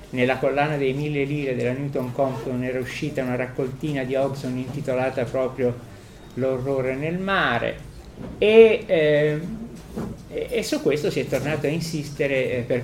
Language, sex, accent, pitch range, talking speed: Italian, male, native, 120-150 Hz, 140 wpm